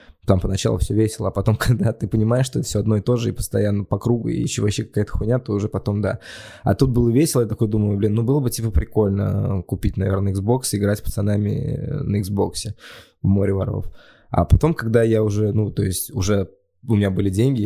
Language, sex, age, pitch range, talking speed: Russian, male, 20-39, 100-115 Hz, 225 wpm